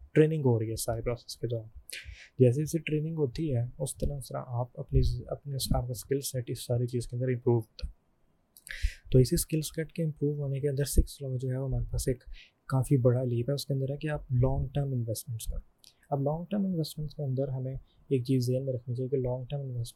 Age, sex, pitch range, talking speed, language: 20-39, male, 120-135 Hz, 225 wpm, Urdu